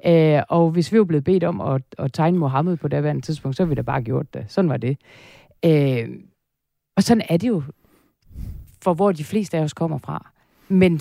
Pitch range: 145-180 Hz